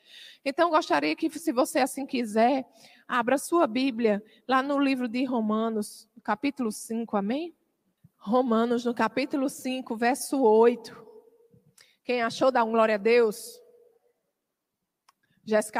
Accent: Brazilian